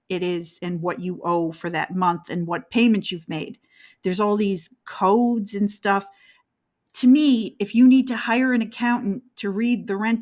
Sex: female